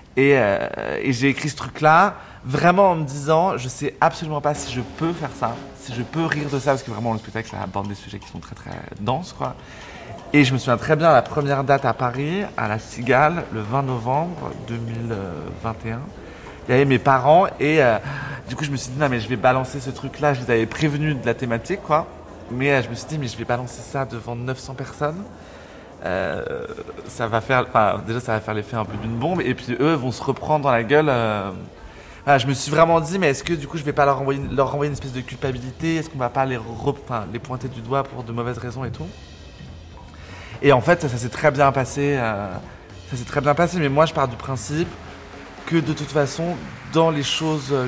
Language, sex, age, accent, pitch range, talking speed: French, male, 30-49, French, 115-145 Hz, 235 wpm